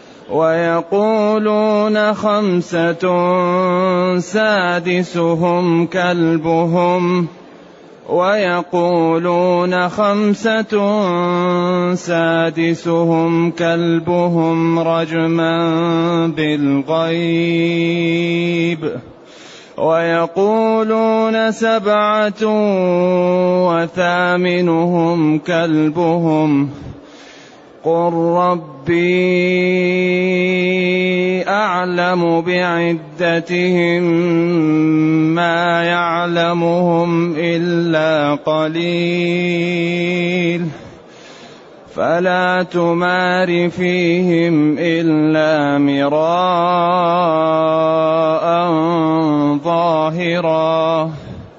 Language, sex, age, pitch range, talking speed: Arabic, male, 30-49, 165-180 Hz, 35 wpm